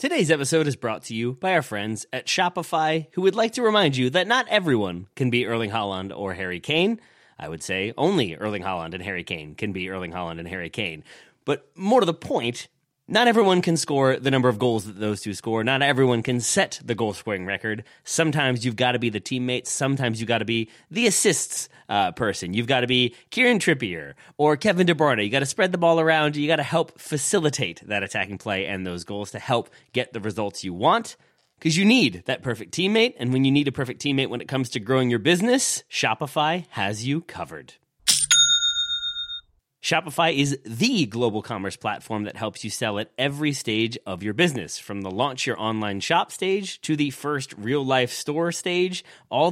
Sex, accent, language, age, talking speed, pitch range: male, American, English, 30-49, 210 wpm, 110-160 Hz